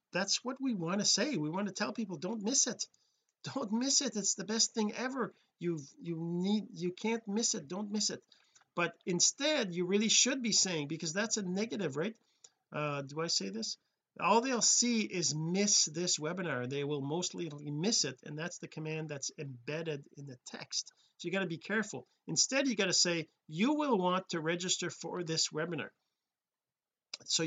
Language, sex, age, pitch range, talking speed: English, male, 50-69, 165-210 Hz, 195 wpm